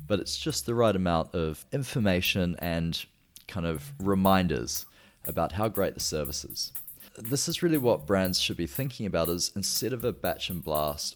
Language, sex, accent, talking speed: English, male, Australian, 185 wpm